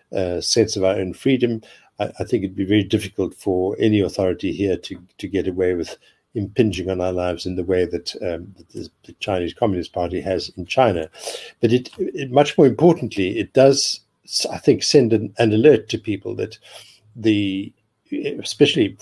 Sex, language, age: male, English, 60-79